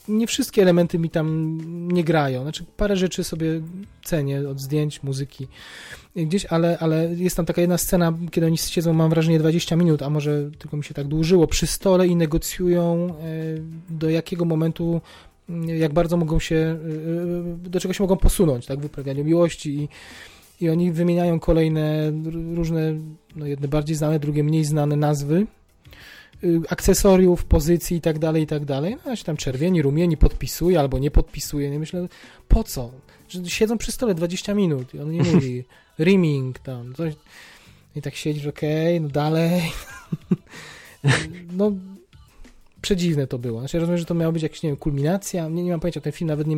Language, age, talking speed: Polish, 20-39, 175 wpm